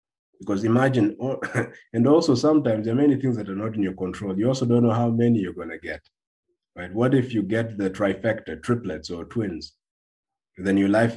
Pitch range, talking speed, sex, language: 95-120 Hz, 205 wpm, male, English